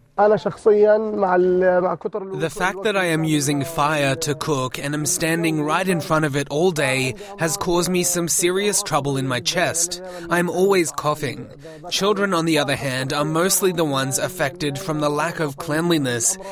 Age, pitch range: 20-39, 120-160 Hz